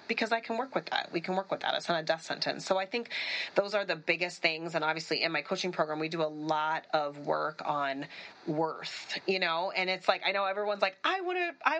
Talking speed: 245 wpm